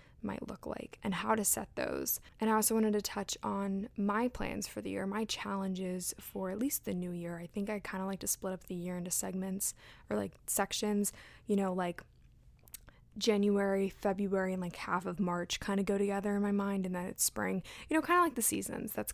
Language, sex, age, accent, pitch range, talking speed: English, female, 20-39, American, 190-220 Hz, 230 wpm